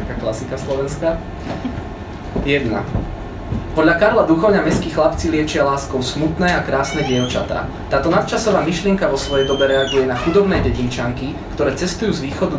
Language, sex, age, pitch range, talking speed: Czech, male, 20-39, 125-165 Hz, 135 wpm